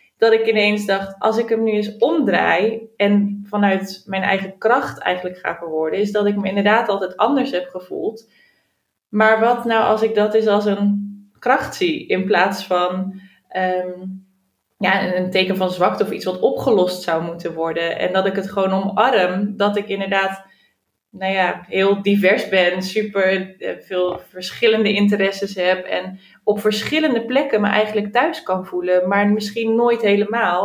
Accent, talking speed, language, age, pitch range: Dutch, 160 wpm, Dutch, 20-39, 185-220 Hz